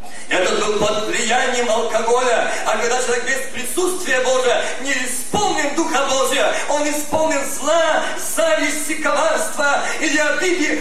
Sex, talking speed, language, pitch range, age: male, 120 wpm, Russian, 235-320 Hz, 40-59